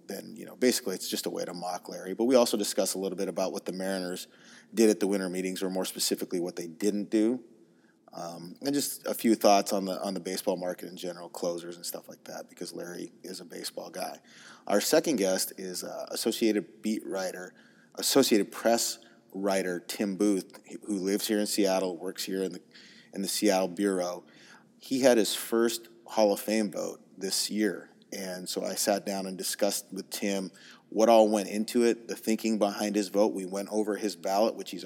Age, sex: 30-49, male